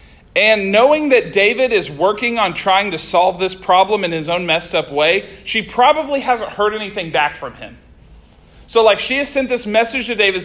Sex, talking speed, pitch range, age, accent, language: male, 200 wpm, 175-240 Hz, 40-59, American, English